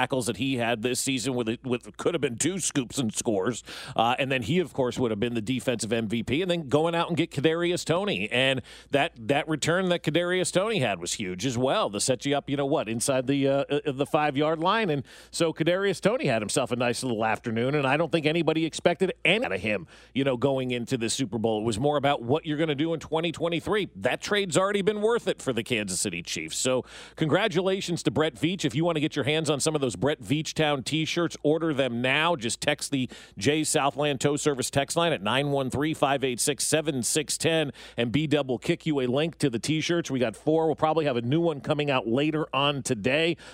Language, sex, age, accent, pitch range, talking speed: English, male, 40-59, American, 130-160 Hz, 225 wpm